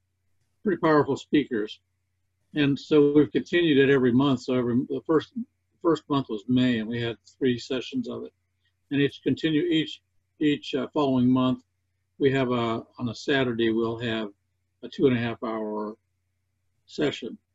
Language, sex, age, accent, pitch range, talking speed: English, male, 50-69, American, 95-140 Hz, 165 wpm